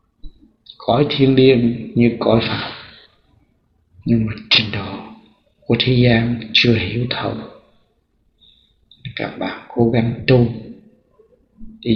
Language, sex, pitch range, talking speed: Vietnamese, male, 100-125 Hz, 110 wpm